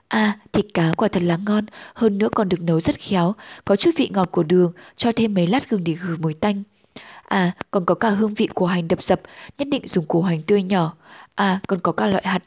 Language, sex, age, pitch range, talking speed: Vietnamese, female, 10-29, 180-220 Hz, 250 wpm